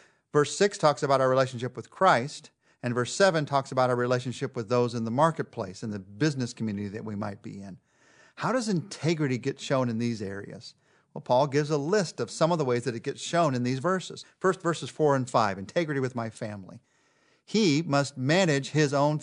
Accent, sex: American, male